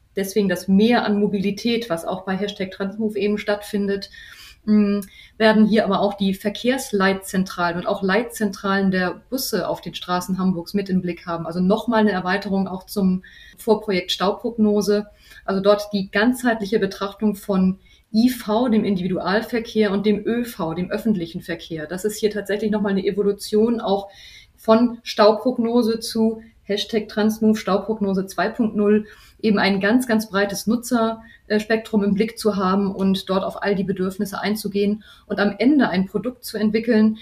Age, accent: 30-49, German